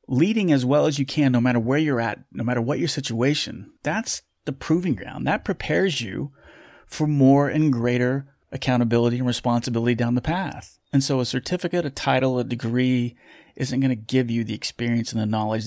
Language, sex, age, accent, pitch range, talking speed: English, male, 30-49, American, 115-145 Hz, 195 wpm